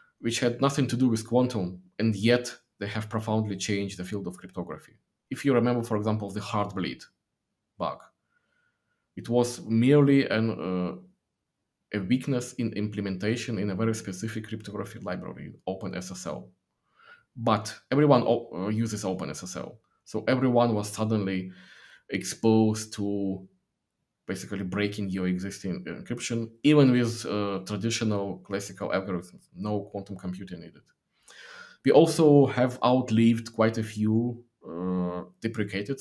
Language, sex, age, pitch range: English, male, 20-39, 95-120 Hz